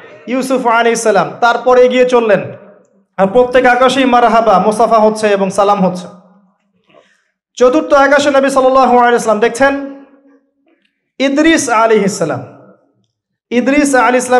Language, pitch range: Bengali, 205-275 Hz